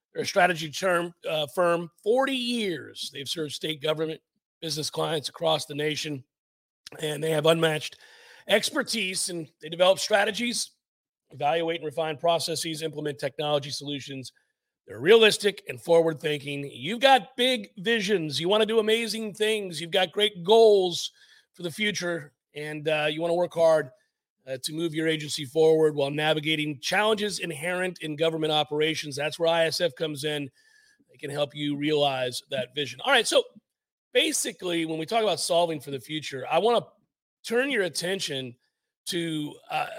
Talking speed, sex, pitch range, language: 160 wpm, male, 150-195 Hz, English